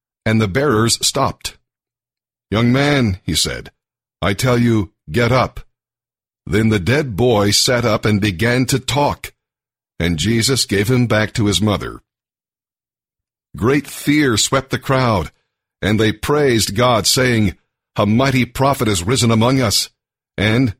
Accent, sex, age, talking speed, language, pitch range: American, male, 50-69, 140 wpm, English, 105-130 Hz